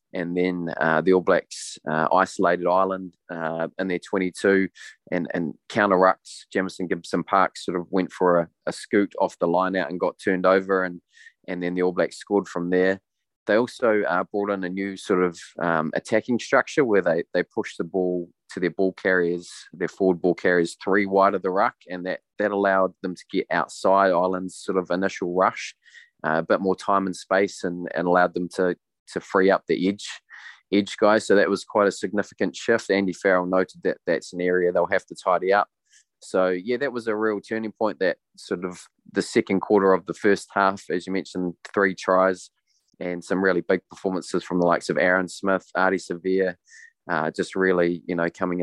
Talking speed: 205 wpm